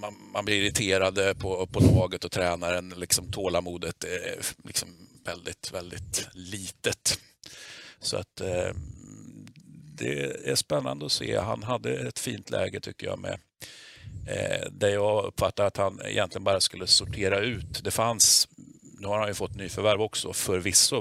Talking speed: 150 wpm